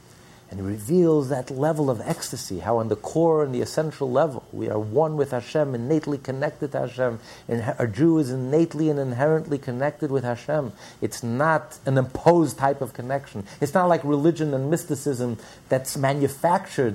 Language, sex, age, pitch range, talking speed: English, male, 50-69, 110-150 Hz, 170 wpm